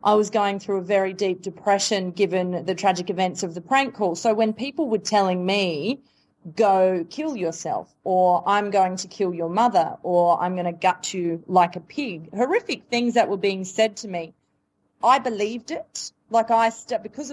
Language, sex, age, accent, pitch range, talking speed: English, female, 30-49, Australian, 180-215 Hz, 190 wpm